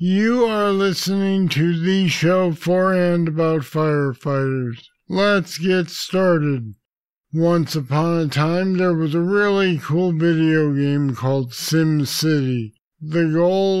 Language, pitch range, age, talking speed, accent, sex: English, 150-170 Hz, 50-69, 120 wpm, American, male